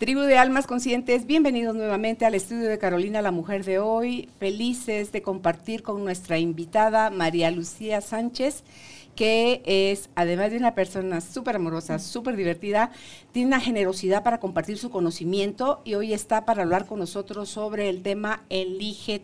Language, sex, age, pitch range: Spanish, female, 50-69, 180-225 Hz